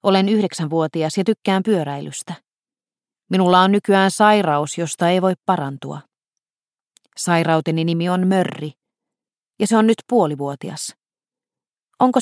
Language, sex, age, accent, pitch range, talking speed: Finnish, female, 30-49, native, 160-210 Hz, 115 wpm